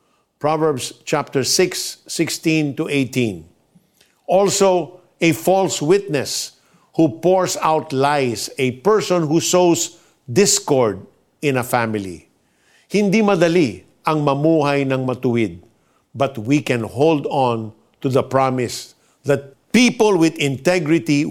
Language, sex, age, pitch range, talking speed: Filipino, male, 50-69, 130-170 Hz, 115 wpm